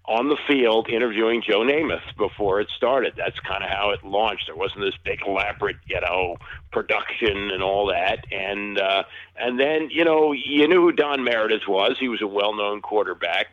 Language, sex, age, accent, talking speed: English, male, 50-69, American, 190 wpm